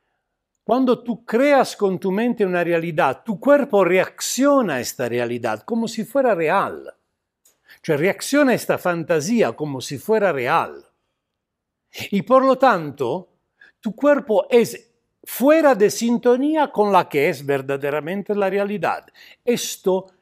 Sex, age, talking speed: male, 60-79, 130 wpm